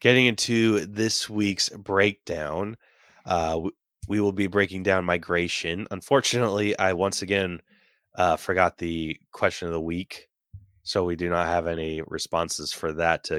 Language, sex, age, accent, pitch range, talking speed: English, male, 20-39, American, 90-115 Hz, 150 wpm